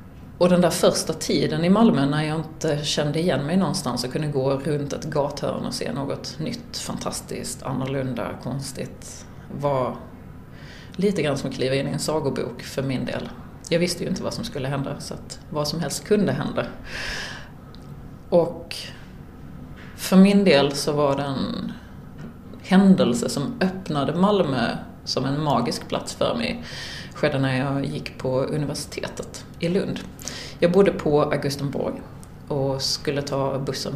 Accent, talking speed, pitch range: Swedish, 155 wpm, 135-170 Hz